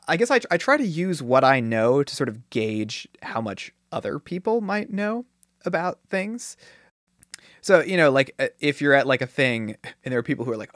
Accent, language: American, English